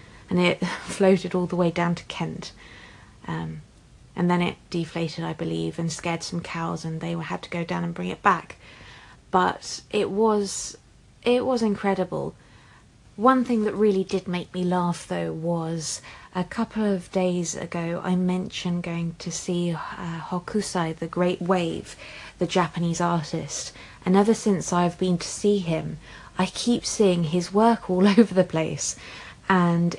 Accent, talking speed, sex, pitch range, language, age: British, 160 wpm, female, 160-185 Hz, English, 30-49